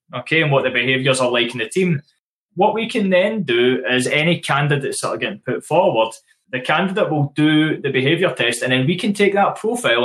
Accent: British